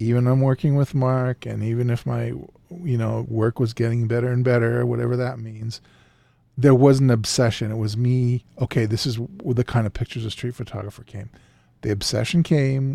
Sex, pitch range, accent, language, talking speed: male, 115-135 Hz, American, English, 190 wpm